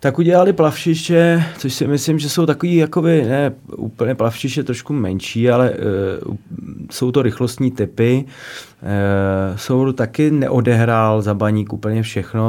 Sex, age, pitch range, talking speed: male, 20-39, 100-125 Hz, 140 wpm